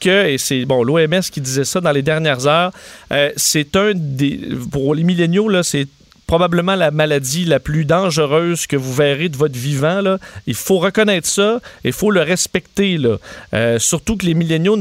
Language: French